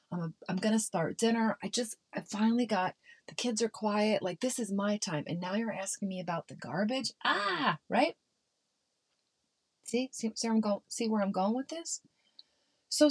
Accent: American